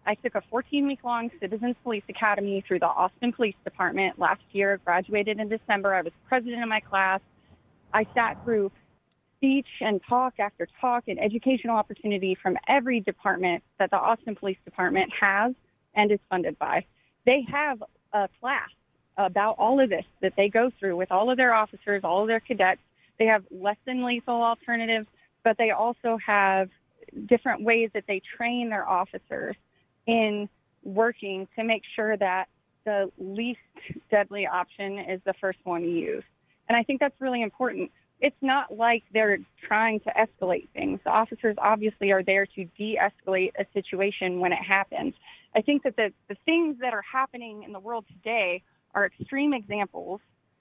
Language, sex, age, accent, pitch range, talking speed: English, female, 30-49, American, 195-235 Hz, 170 wpm